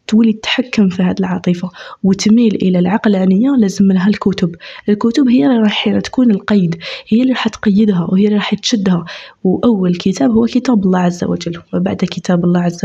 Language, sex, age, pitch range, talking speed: Arabic, female, 20-39, 180-225 Hz, 170 wpm